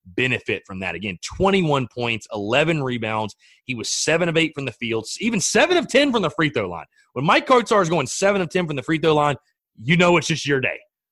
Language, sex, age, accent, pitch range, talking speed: English, male, 30-49, American, 120-165 Hz, 235 wpm